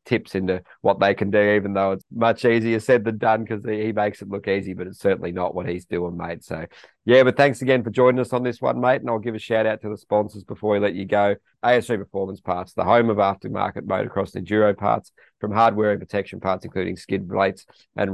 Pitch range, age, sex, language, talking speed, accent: 95-105 Hz, 30-49, male, English, 245 wpm, Australian